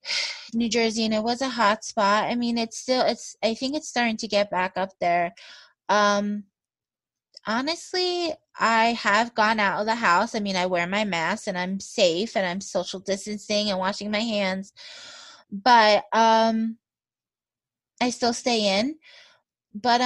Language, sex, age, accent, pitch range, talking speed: English, female, 20-39, American, 205-290 Hz, 165 wpm